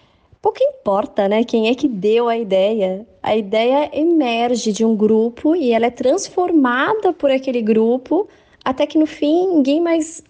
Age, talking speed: 20-39, 165 wpm